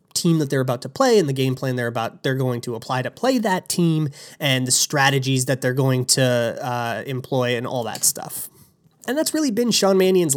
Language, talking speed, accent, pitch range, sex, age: English, 225 wpm, American, 125-160 Hz, male, 20-39